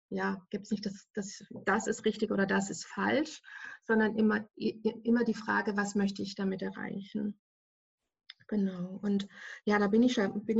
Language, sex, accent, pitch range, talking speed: English, female, German, 205-240 Hz, 170 wpm